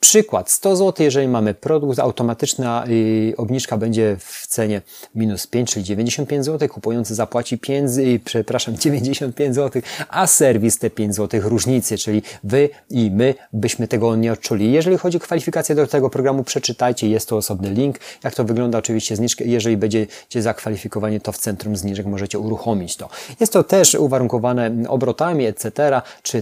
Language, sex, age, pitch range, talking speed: Polish, male, 30-49, 110-135 Hz, 160 wpm